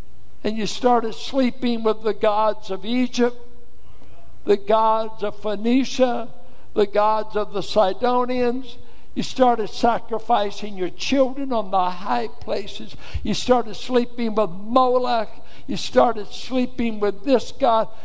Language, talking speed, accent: English, 125 wpm, American